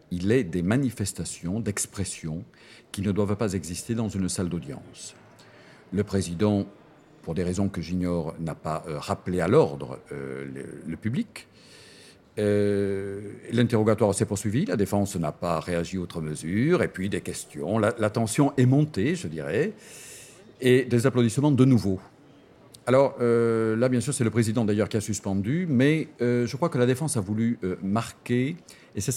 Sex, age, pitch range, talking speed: male, 50-69, 90-120 Hz, 170 wpm